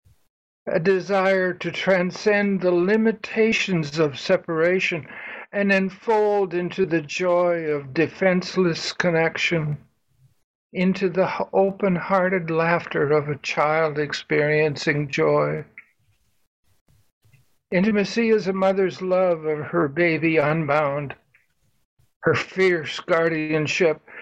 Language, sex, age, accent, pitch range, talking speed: English, male, 60-79, American, 150-190 Hz, 95 wpm